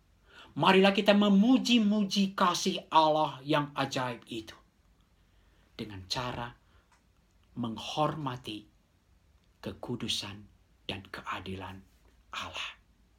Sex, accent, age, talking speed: male, native, 50-69, 70 wpm